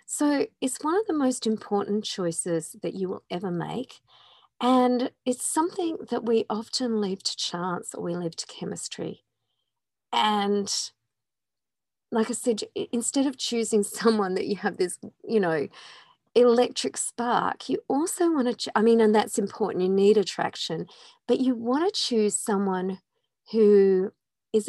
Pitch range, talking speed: 190-250 Hz, 155 wpm